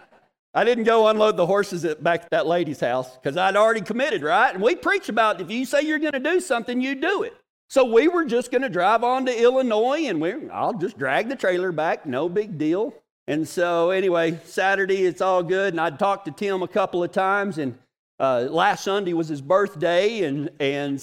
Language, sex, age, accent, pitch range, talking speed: English, male, 40-59, American, 175-270 Hz, 225 wpm